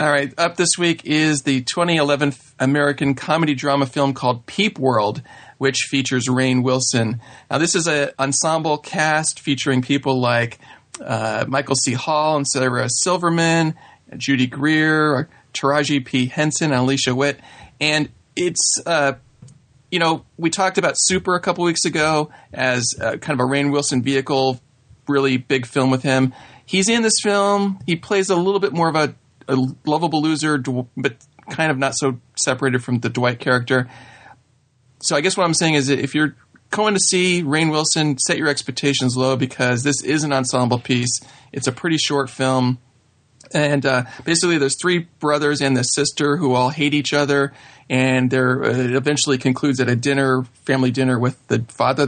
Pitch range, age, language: 130-155 Hz, 40-59, English